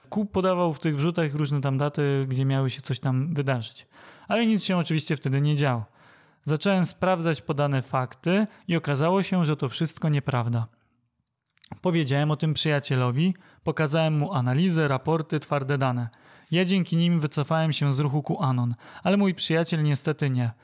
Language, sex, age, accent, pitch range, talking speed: Polish, male, 30-49, native, 135-165 Hz, 165 wpm